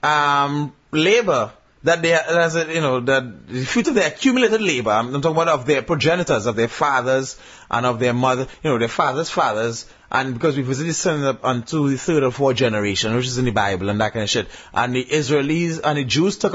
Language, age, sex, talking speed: English, 30-49, male, 220 wpm